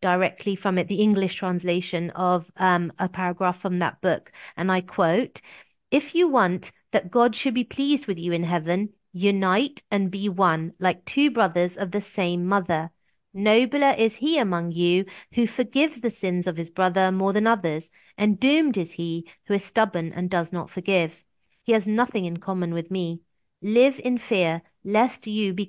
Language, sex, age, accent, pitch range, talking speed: English, female, 40-59, British, 175-215 Hz, 180 wpm